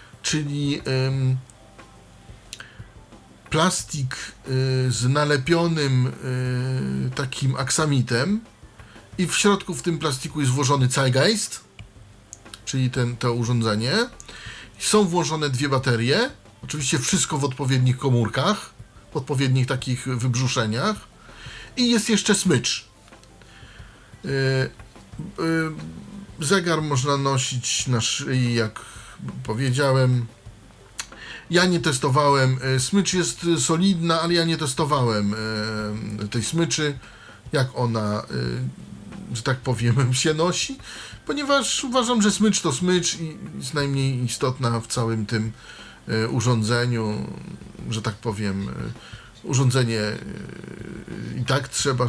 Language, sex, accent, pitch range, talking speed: Polish, male, native, 115-155 Hz, 105 wpm